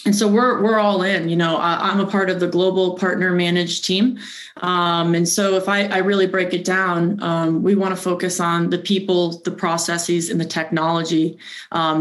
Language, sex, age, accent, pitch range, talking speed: English, female, 20-39, American, 165-195 Hz, 205 wpm